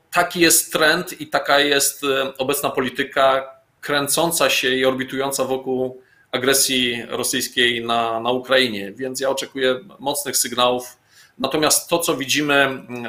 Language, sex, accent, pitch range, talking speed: Polish, male, native, 130-155 Hz, 125 wpm